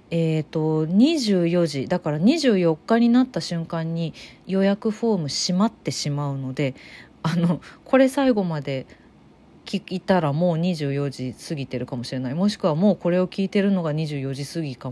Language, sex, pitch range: Japanese, female, 155-210 Hz